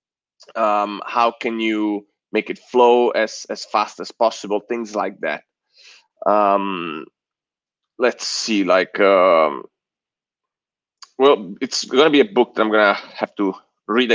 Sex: male